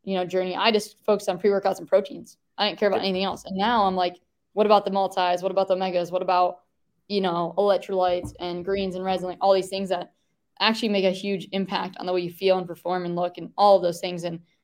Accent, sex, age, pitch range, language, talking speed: American, female, 10-29, 180-200 Hz, English, 250 wpm